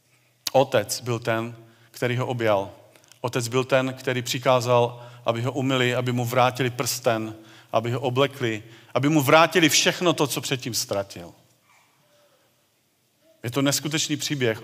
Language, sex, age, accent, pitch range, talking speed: Czech, male, 40-59, native, 125-145 Hz, 135 wpm